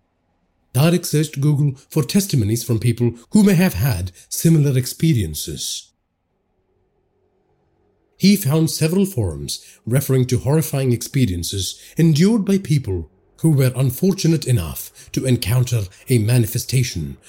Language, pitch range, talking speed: English, 100-155 Hz, 110 wpm